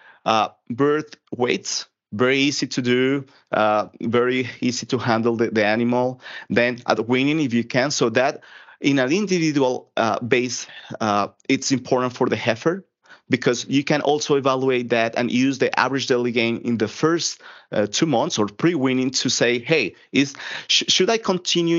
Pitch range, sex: 120-150 Hz, male